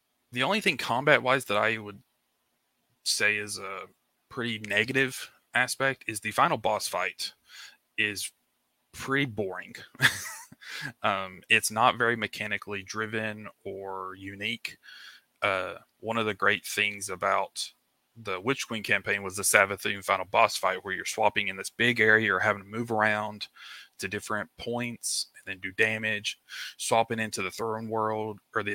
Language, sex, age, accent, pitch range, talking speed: English, male, 20-39, American, 100-115 Hz, 150 wpm